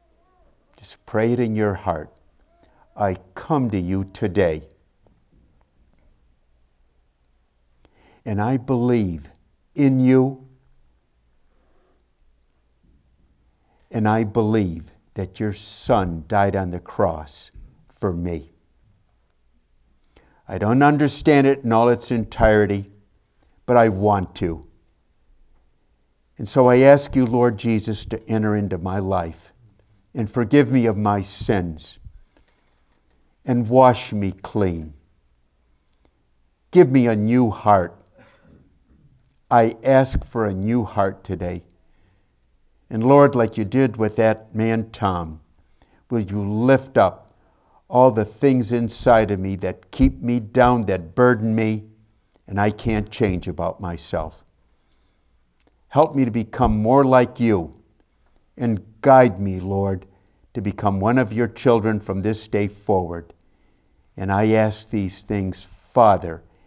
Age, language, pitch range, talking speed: 60-79, English, 85-115 Hz, 120 wpm